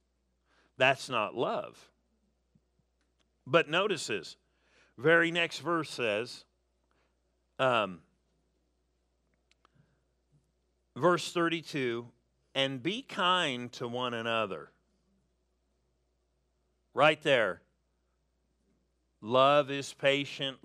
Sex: male